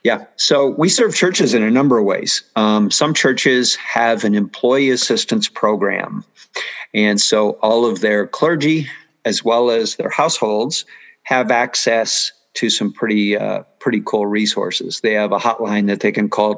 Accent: American